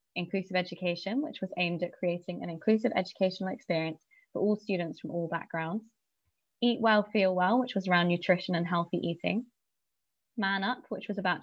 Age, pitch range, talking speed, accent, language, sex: 20-39, 170-210 Hz, 175 wpm, British, English, female